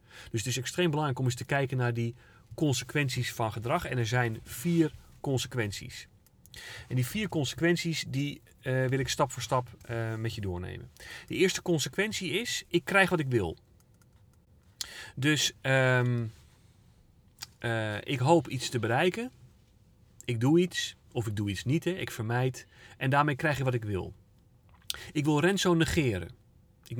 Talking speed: 165 wpm